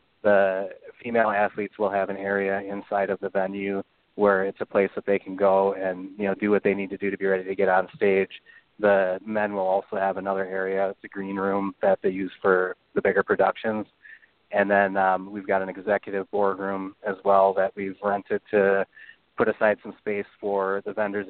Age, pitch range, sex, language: 20-39, 95-105 Hz, male, English